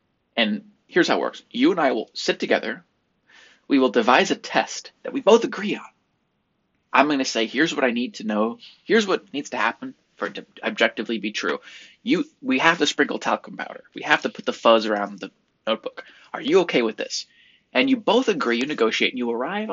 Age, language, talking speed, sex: 20-39, English, 220 wpm, male